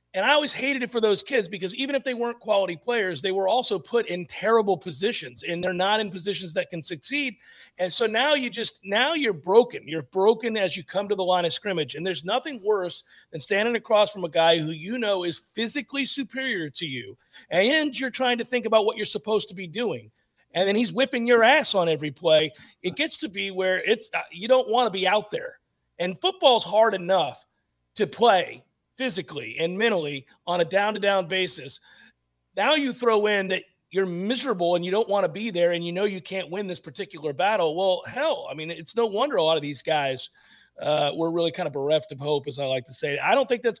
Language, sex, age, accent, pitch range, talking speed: English, male, 40-59, American, 170-235 Hz, 225 wpm